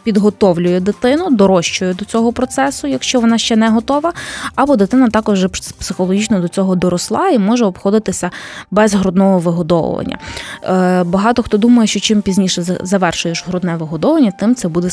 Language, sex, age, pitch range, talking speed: Ukrainian, female, 20-39, 180-220 Hz, 145 wpm